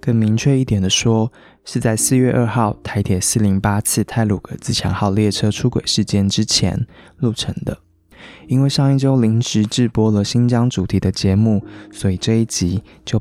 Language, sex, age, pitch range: Chinese, male, 20-39, 100-120 Hz